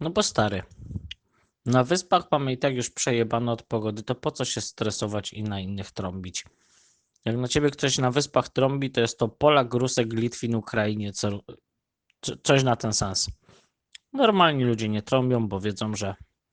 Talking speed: 170 wpm